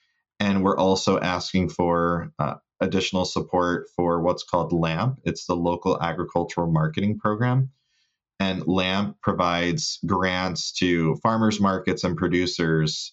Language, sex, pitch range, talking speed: English, male, 85-100 Hz, 125 wpm